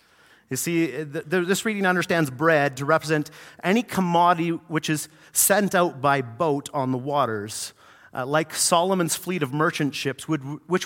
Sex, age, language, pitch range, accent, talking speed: male, 40-59, English, 150-185 Hz, American, 145 wpm